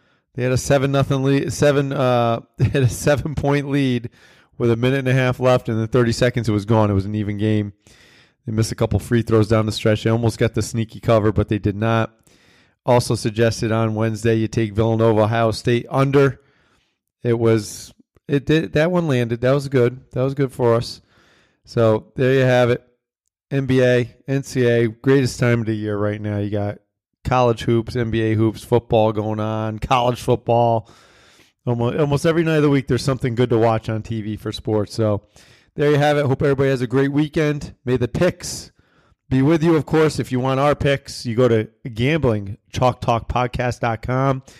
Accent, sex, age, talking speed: American, male, 40-59, 195 wpm